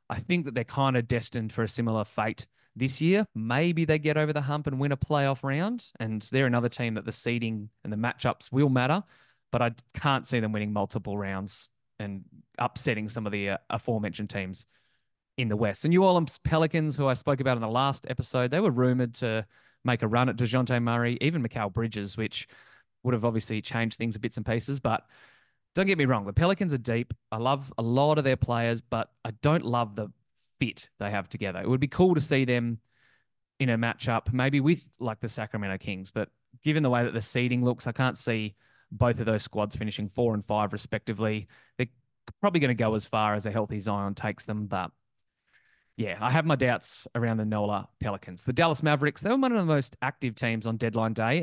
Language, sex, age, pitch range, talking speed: English, male, 20-39, 110-135 Hz, 220 wpm